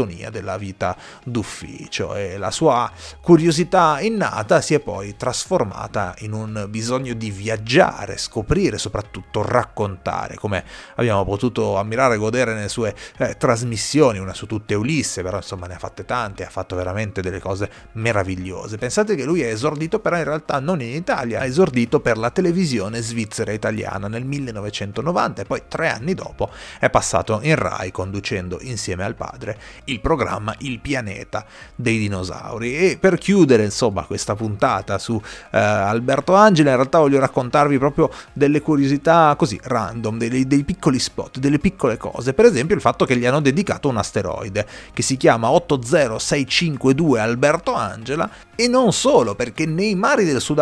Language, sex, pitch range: Italian, male, 105-155 Hz